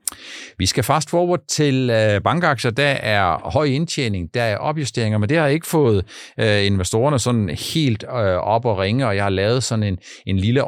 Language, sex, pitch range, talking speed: Danish, male, 100-135 Hz, 180 wpm